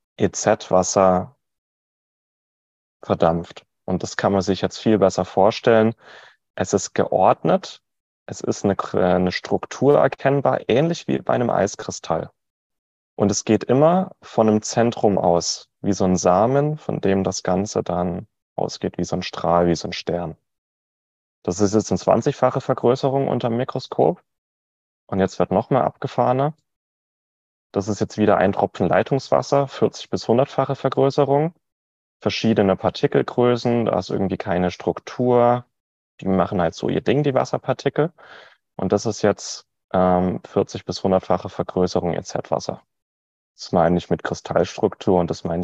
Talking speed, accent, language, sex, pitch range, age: 145 wpm, German, German, male, 90-120 Hz, 30-49